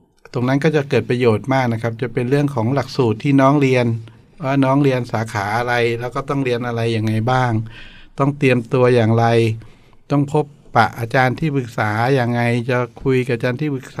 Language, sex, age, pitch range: Thai, male, 60-79, 115-135 Hz